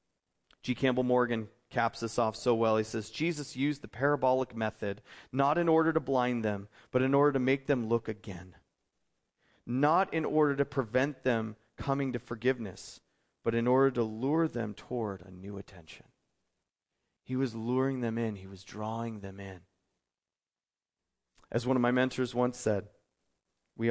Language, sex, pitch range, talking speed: English, male, 110-150 Hz, 165 wpm